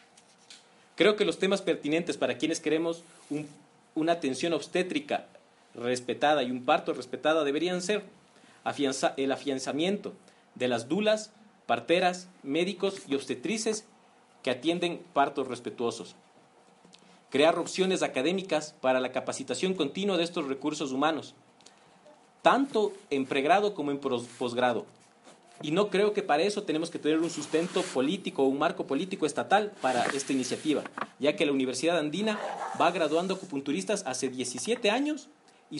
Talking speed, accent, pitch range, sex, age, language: 135 wpm, Mexican, 135-190 Hz, male, 40-59, Spanish